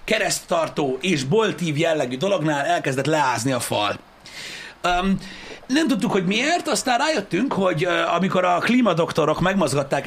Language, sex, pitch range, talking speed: Hungarian, male, 145-205 Hz, 120 wpm